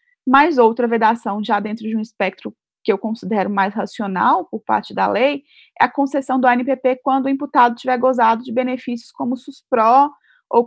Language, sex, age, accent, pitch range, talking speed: Portuguese, female, 20-39, Brazilian, 220-275 Hz, 185 wpm